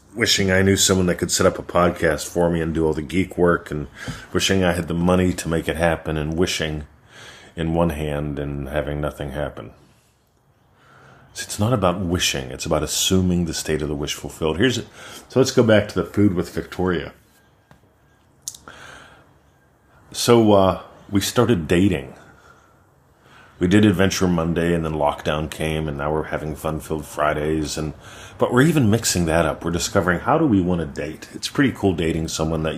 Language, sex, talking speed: English, male, 185 wpm